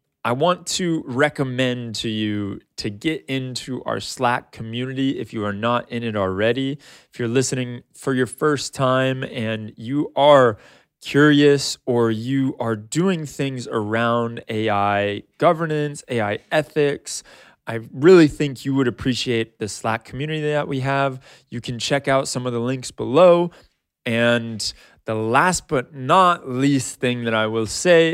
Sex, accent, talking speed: male, American, 155 wpm